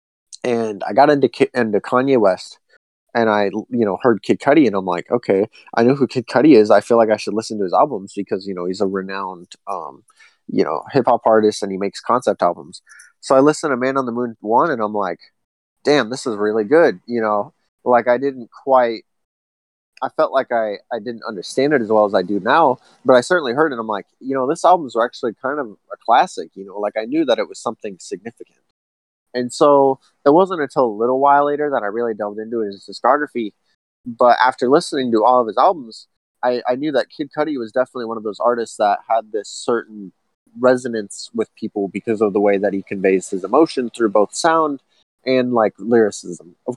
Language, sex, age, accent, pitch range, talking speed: English, male, 20-39, American, 100-130 Hz, 225 wpm